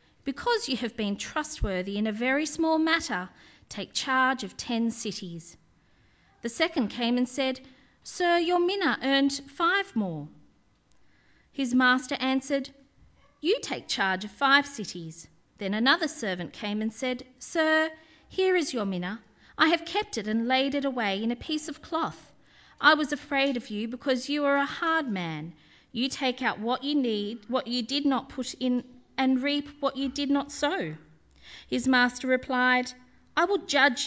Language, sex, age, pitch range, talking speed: English, female, 40-59, 215-285 Hz, 165 wpm